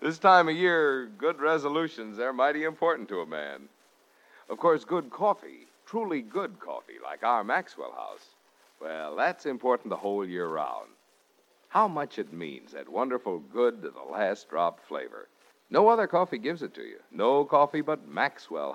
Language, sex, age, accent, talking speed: English, male, 60-79, American, 170 wpm